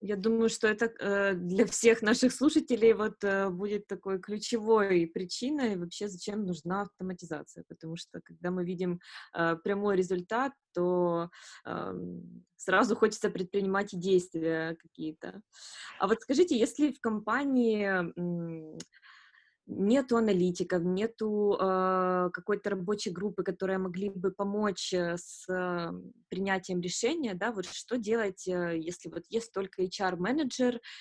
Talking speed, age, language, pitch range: 120 wpm, 20-39, Russian, 170-210 Hz